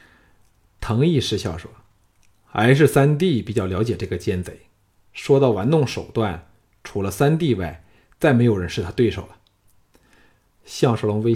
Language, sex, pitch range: Chinese, male, 100-125 Hz